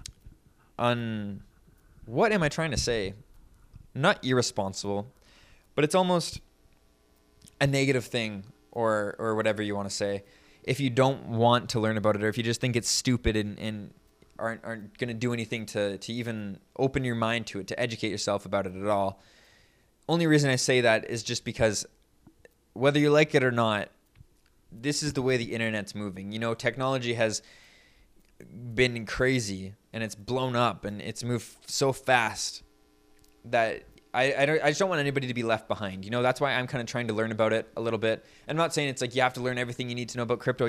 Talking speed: 200 wpm